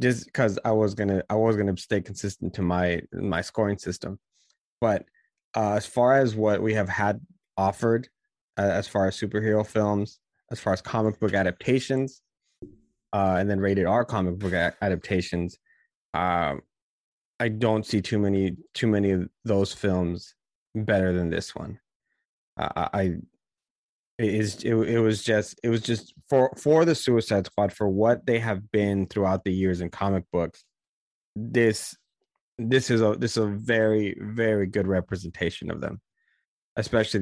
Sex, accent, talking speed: male, American, 165 wpm